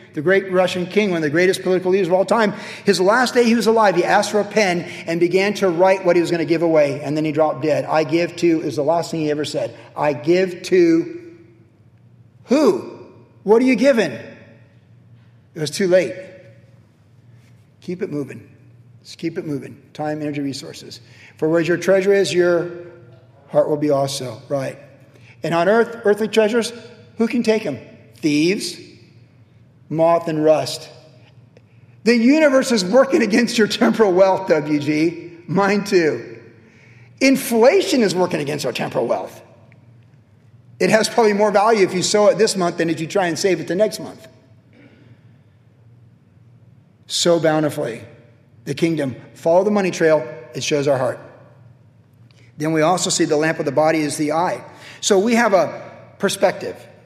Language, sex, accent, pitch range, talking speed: English, male, American, 125-190 Hz, 170 wpm